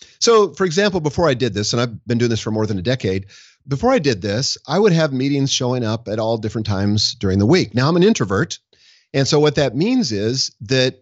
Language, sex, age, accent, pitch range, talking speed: English, male, 40-59, American, 115-150 Hz, 245 wpm